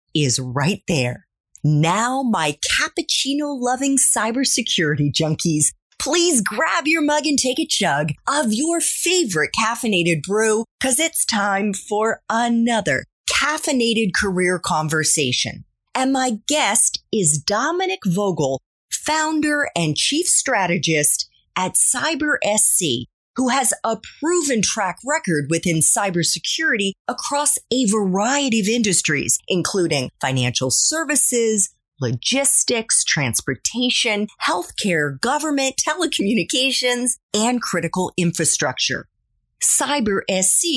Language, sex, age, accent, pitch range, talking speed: English, female, 30-49, American, 175-275 Hz, 100 wpm